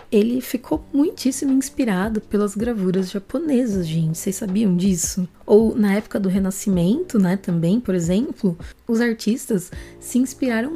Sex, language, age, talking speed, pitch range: female, Portuguese, 20-39, 135 wpm, 175-215 Hz